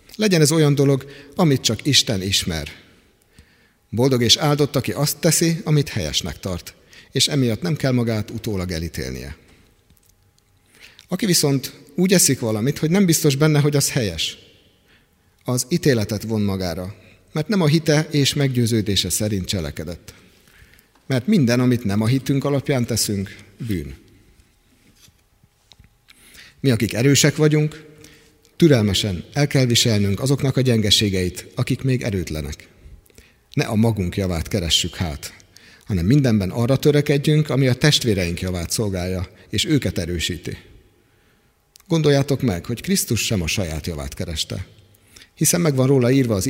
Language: Hungarian